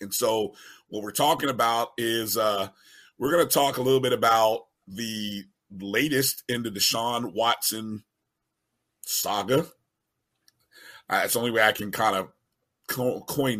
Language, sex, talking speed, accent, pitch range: English, male, 150 wpm, American, 115-155 Hz